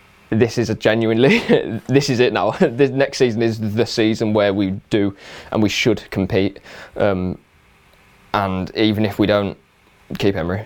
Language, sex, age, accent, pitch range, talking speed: English, male, 20-39, British, 100-115 Hz, 165 wpm